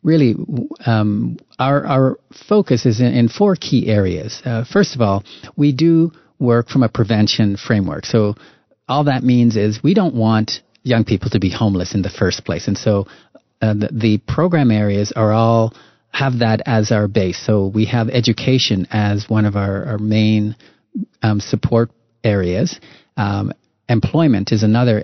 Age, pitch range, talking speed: 40-59, 105-120 Hz, 170 wpm